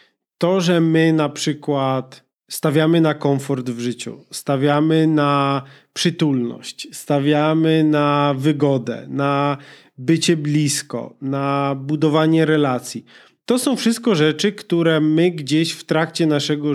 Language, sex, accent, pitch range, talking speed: Polish, male, native, 140-175 Hz, 115 wpm